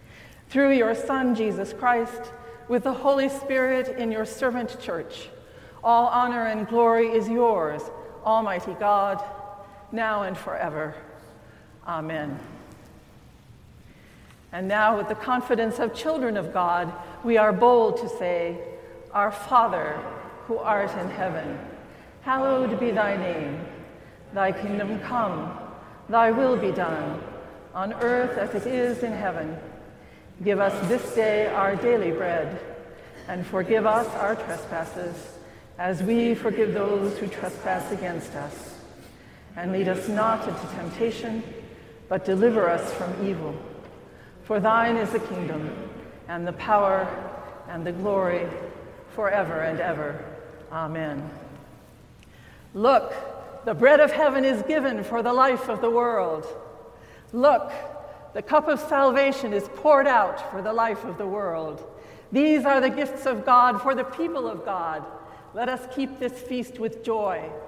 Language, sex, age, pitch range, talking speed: English, female, 50-69, 185-245 Hz, 135 wpm